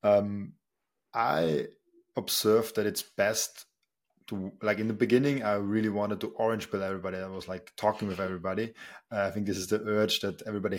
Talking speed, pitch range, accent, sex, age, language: 180 wpm, 100-110 Hz, German, male, 20-39, English